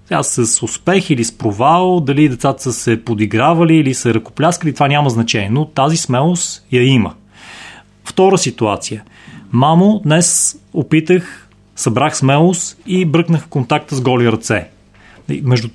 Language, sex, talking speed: Bulgarian, male, 135 wpm